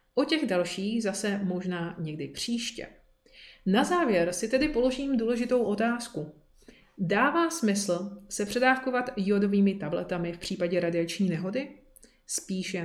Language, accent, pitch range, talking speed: Czech, native, 180-230 Hz, 115 wpm